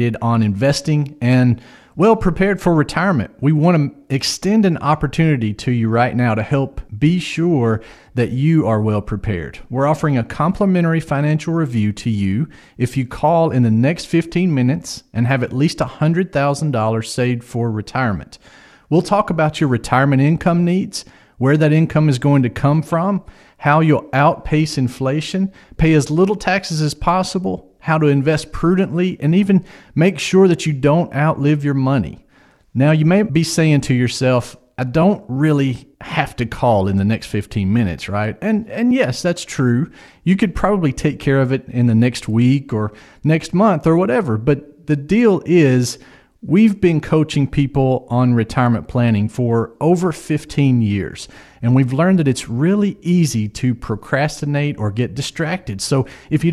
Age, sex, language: 40-59, male, English